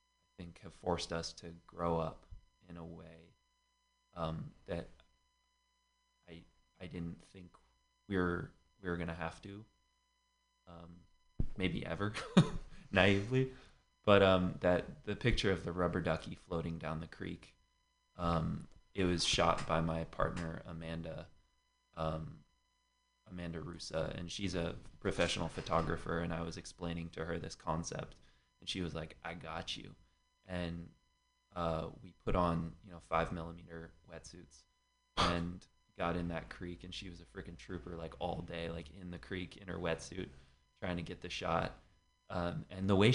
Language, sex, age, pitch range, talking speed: English, male, 20-39, 80-90 Hz, 155 wpm